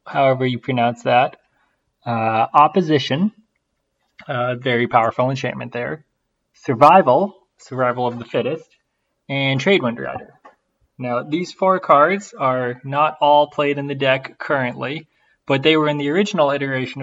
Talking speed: 135 wpm